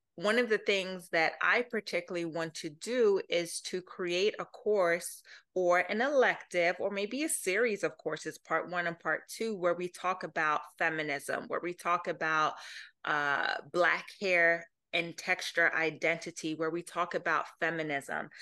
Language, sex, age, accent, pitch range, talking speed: English, female, 30-49, American, 170-215 Hz, 160 wpm